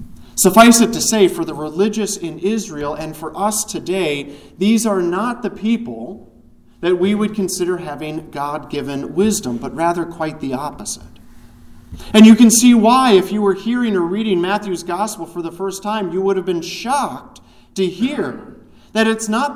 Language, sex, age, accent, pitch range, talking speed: English, male, 40-59, American, 165-215 Hz, 175 wpm